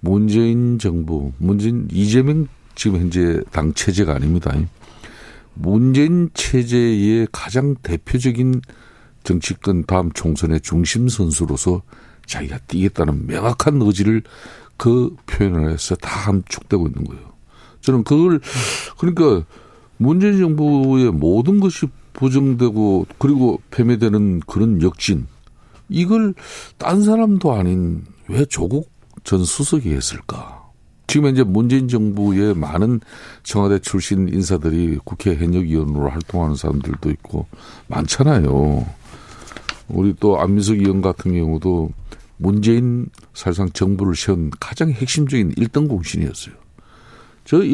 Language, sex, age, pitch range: Korean, male, 50-69, 90-130 Hz